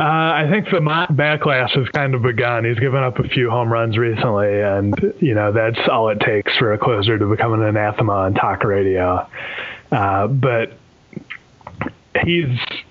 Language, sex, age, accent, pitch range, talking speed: English, male, 20-39, American, 100-130 Hz, 175 wpm